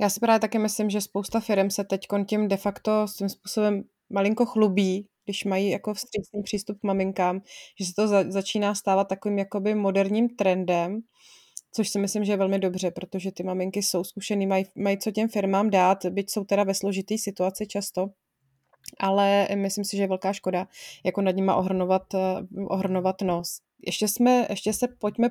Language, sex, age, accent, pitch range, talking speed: Czech, female, 20-39, native, 195-220 Hz, 185 wpm